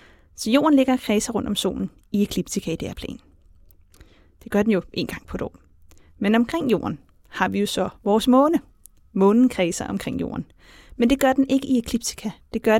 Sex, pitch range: female, 190-250 Hz